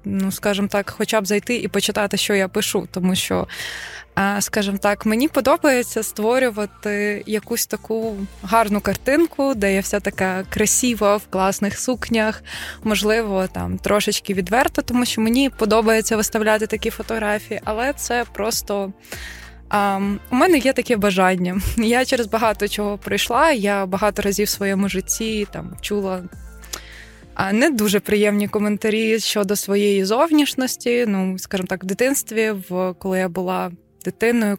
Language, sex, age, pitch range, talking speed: Ukrainian, female, 20-39, 195-225 Hz, 140 wpm